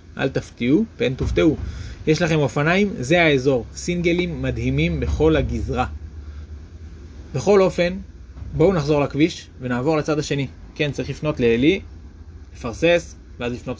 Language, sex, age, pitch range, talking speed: Hebrew, male, 20-39, 105-155 Hz, 120 wpm